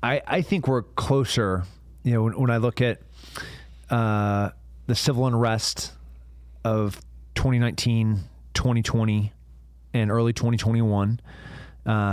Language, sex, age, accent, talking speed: English, male, 20-39, American, 110 wpm